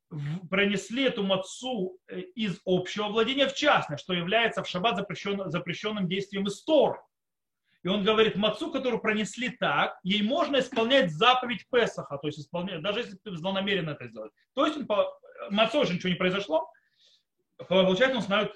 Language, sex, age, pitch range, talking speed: Russian, male, 30-49, 180-235 Hz, 160 wpm